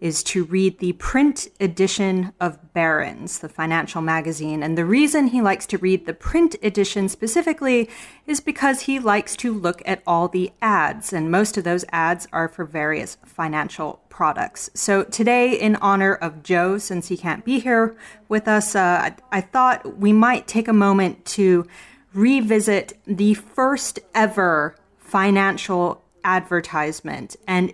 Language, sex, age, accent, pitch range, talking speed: English, female, 30-49, American, 180-230 Hz, 155 wpm